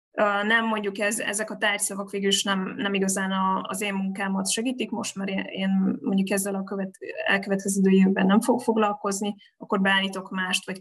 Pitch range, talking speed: 190-205 Hz, 165 wpm